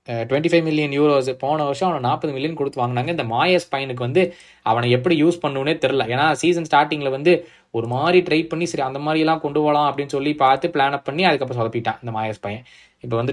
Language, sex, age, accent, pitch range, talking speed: Tamil, male, 20-39, native, 120-165 Hz, 205 wpm